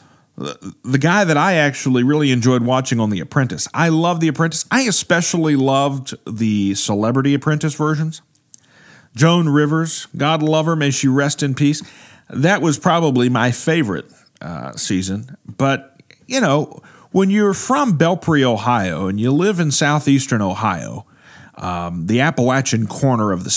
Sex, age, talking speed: male, 40-59, 150 wpm